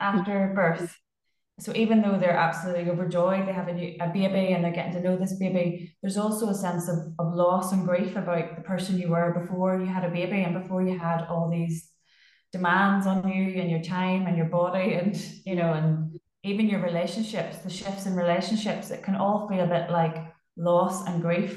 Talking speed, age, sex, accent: 210 wpm, 20-39, female, Irish